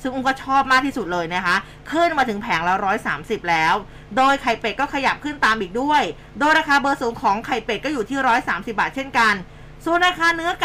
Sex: female